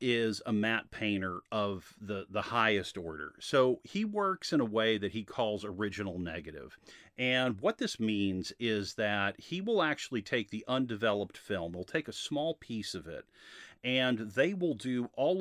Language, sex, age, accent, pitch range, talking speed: English, male, 40-59, American, 105-155 Hz, 175 wpm